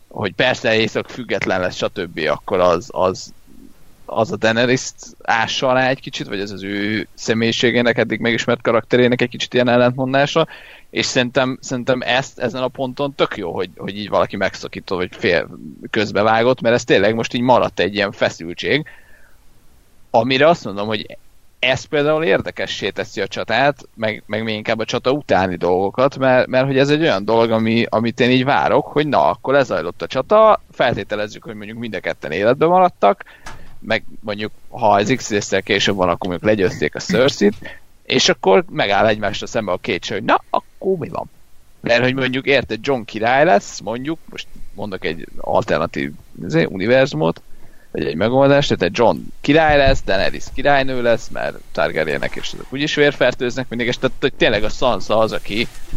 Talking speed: 175 wpm